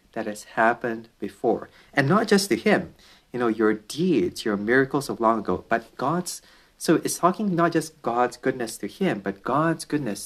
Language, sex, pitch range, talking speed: English, male, 110-150 Hz, 185 wpm